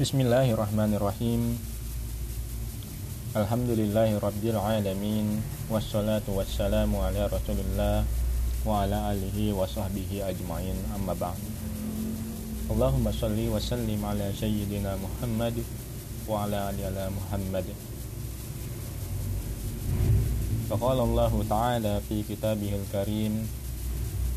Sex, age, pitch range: male, 20-39, 100-115 Hz